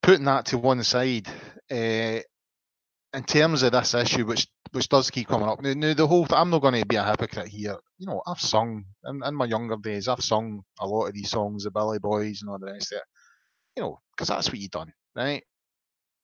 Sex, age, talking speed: male, 20-39, 230 wpm